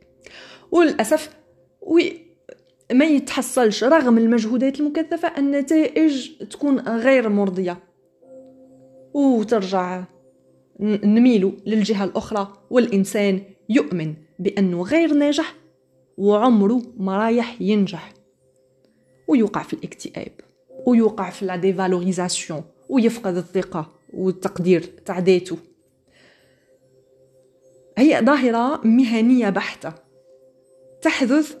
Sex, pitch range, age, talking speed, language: female, 170-245 Hz, 30-49, 70 wpm, Arabic